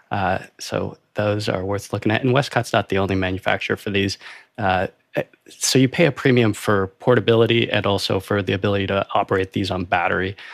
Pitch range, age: 95-110 Hz, 20-39